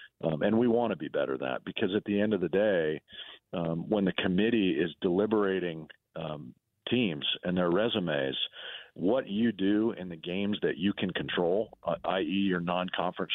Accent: American